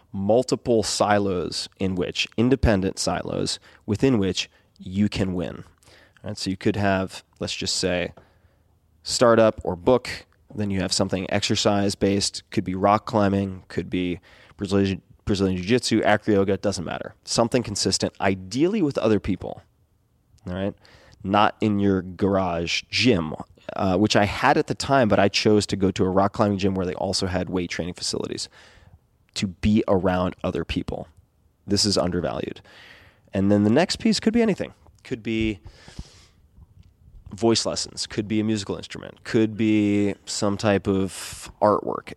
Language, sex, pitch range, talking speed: English, male, 95-105 Hz, 160 wpm